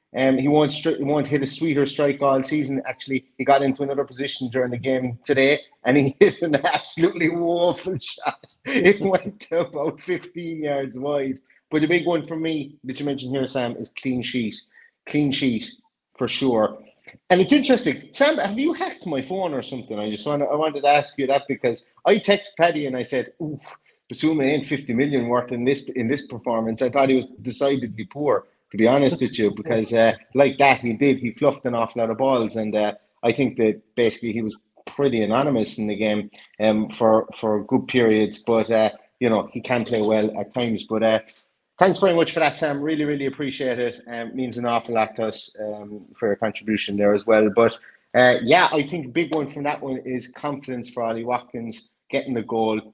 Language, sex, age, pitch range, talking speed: English, male, 30-49, 115-150 Hz, 215 wpm